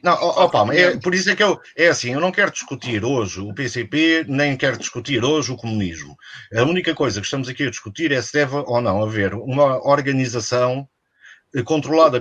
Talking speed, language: 195 wpm, Portuguese